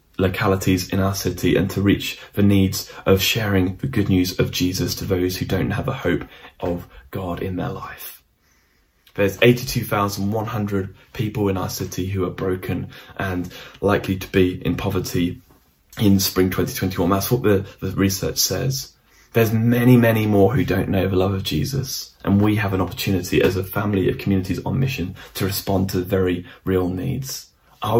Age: 20-39